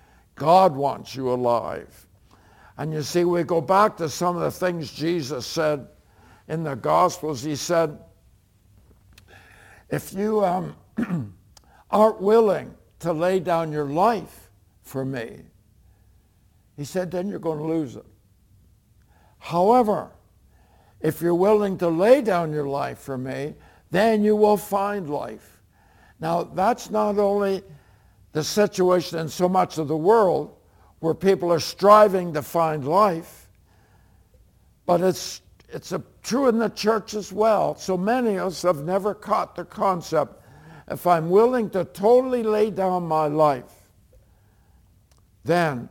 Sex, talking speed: male, 140 wpm